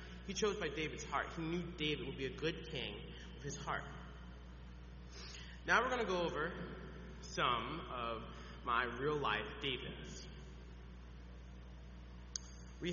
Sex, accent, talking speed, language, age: male, American, 130 wpm, English, 30-49